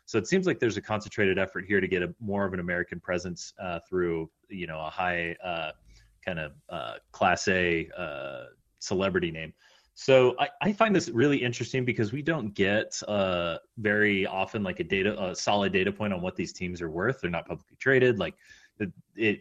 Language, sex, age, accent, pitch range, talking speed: English, male, 30-49, American, 95-120 Hz, 200 wpm